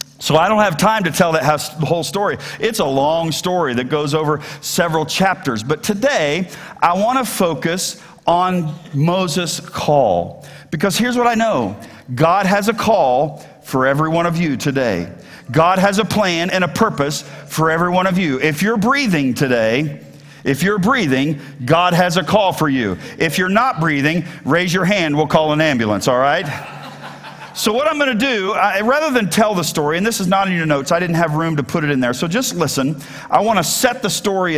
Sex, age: male, 50-69